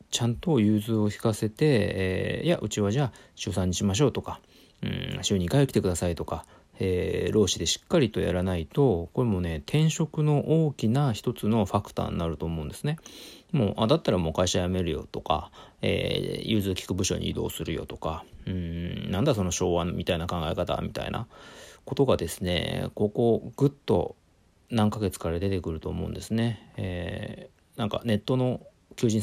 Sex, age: male, 40-59